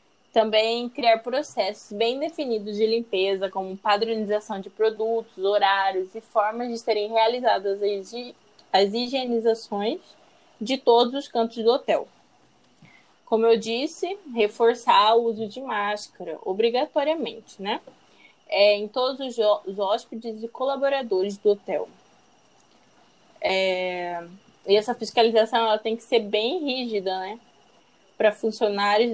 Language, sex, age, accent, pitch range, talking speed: Portuguese, female, 10-29, Brazilian, 205-235 Hz, 110 wpm